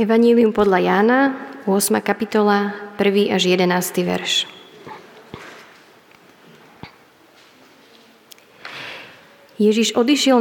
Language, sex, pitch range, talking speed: Slovak, female, 200-235 Hz, 65 wpm